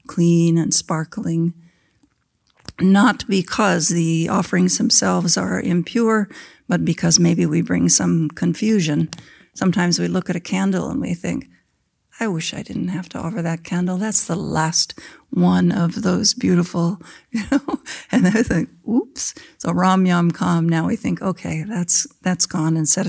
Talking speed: 160 wpm